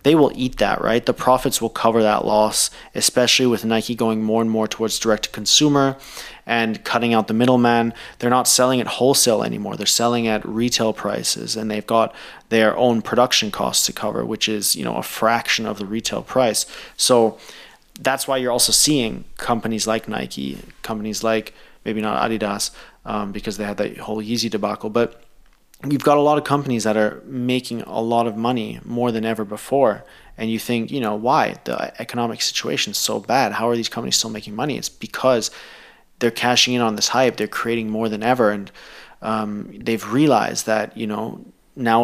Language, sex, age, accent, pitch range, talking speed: English, male, 30-49, Canadian, 110-120 Hz, 195 wpm